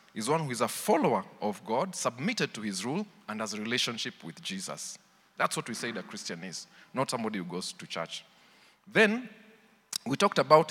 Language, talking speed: English, 195 wpm